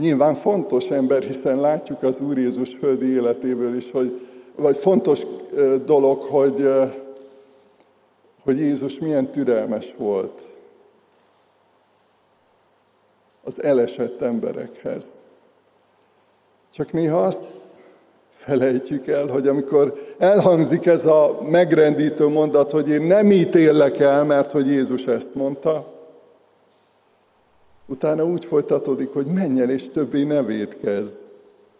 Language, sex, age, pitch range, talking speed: Hungarian, male, 50-69, 135-190 Hz, 100 wpm